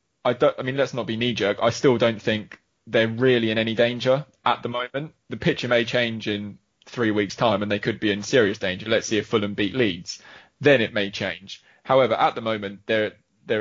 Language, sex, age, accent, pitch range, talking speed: English, male, 20-39, British, 105-145 Hz, 215 wpm